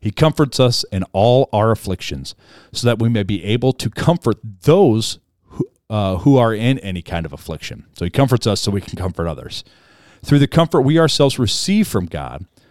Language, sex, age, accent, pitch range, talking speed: English, male, 40-59, American, 95-125 Hz, 200 wpm